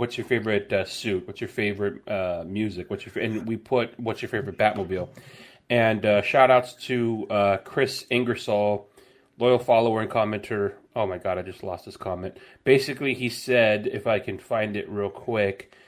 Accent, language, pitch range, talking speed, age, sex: American, English, 100-125 Hz, 190 wpm, 30-49, male